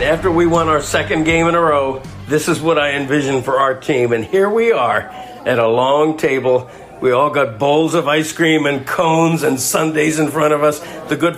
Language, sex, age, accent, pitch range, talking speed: English, male, 60-79, American, 125-155 Hz, 220 wpm